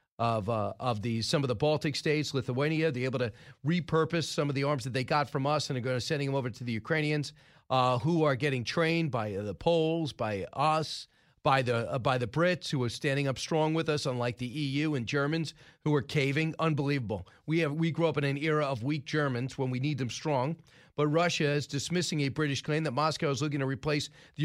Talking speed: 235 wpm